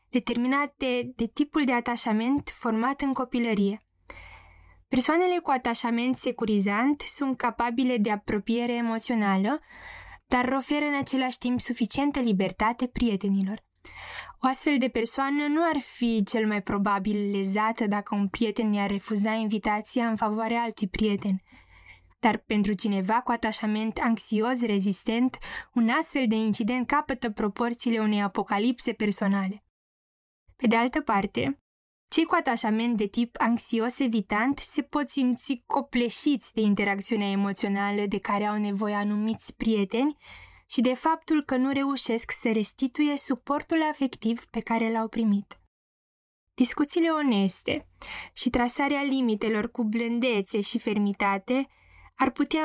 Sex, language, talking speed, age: female, Romanian, 125 wpm, 10-29